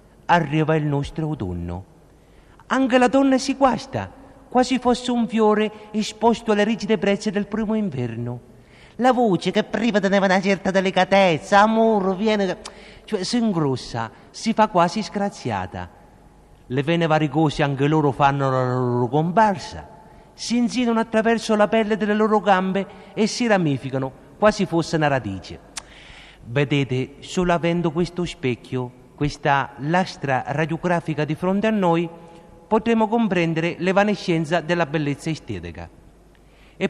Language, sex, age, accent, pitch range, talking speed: Italian, male, 50-69, native, 130-210 Hz, 130 wpm